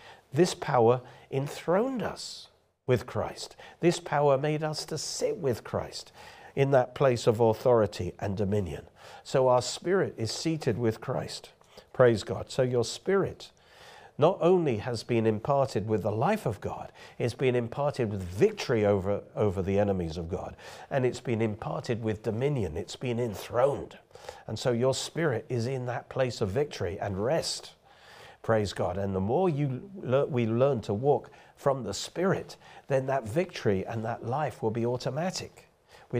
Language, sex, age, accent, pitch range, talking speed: English, male, 50-69, British, 110-145 Hz, 160 wpm